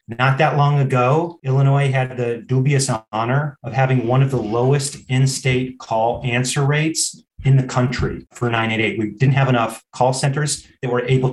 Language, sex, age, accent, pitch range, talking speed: English, male, 30-49, American, 120-135 Hz, 175 wpm